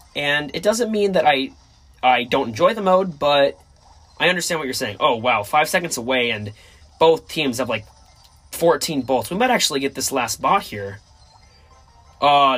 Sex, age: male, 20-39